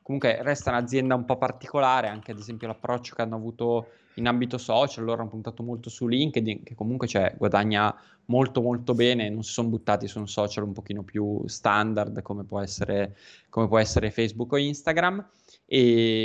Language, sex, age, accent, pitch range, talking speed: Italian, male, 20-39, native, 105-125 Hz, 185 wpm